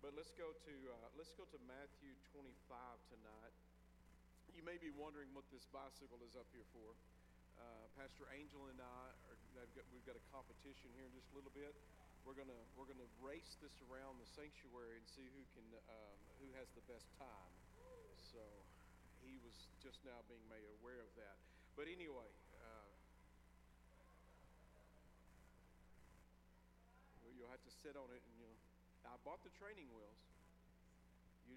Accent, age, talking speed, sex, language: American, 50-69, 155 wpm, male, English